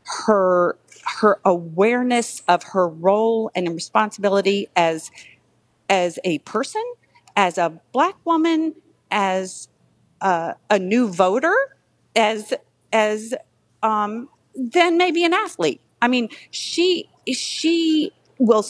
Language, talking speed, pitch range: English, 105 wpm, 185-270 Hz